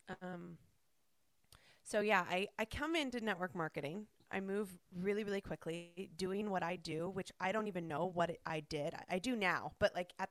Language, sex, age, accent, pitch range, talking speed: English, female, 20-39, American, 165-215 Hz, 190 wpm